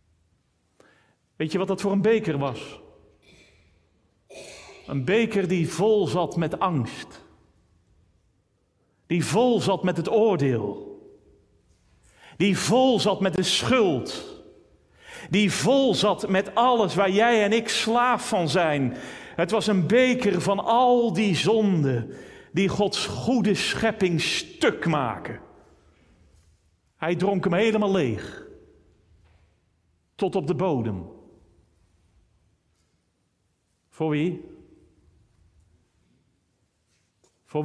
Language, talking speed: Dutch, 105 wpm